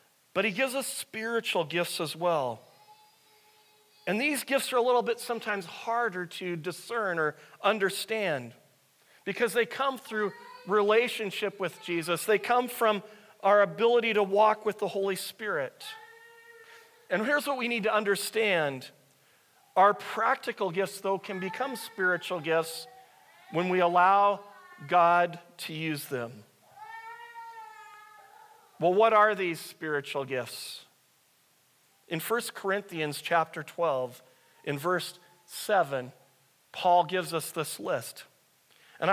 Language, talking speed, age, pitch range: English, 125 wpm, 40-59, 175-240 Hz